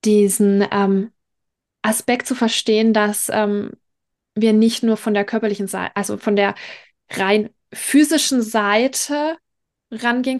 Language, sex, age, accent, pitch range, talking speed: German, female, 20-39, German, 215-245 Hz, 120 wpm